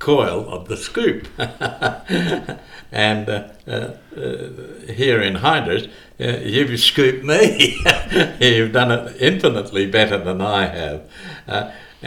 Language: English